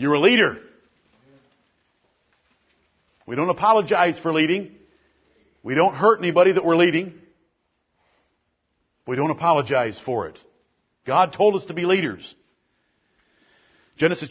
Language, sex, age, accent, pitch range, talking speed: English, male, 50-69, American, 160-225 Hz, 115 wpm